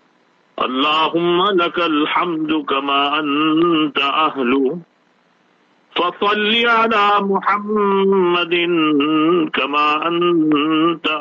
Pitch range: 140-190 Hz